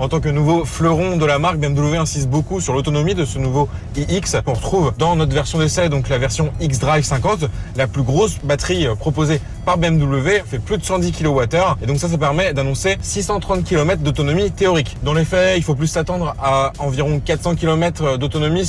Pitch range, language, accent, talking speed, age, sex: 125-155 Hz, French, French, 200 wpm, 20-39, male